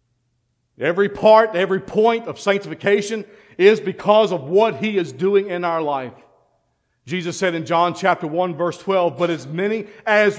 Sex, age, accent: male, 50-69, American